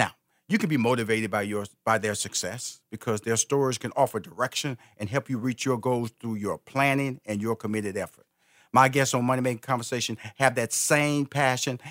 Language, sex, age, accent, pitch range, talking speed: English, male, 50-69, American, 100-130 Hz, 190 wpm